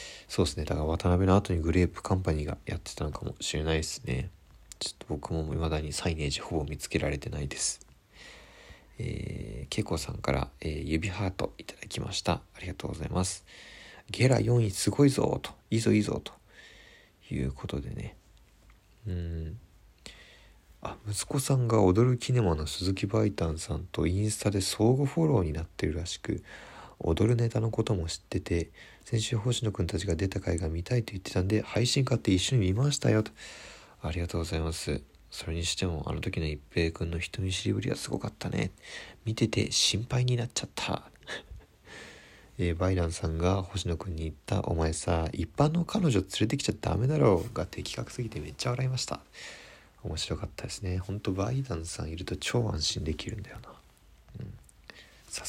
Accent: native